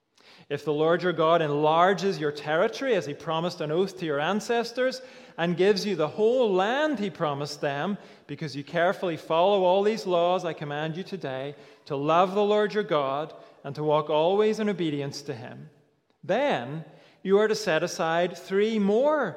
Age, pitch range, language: 40-59, 155-205 Hz, English